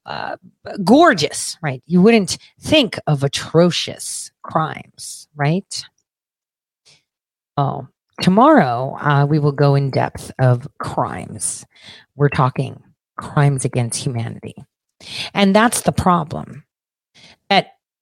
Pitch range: 130-190 Hz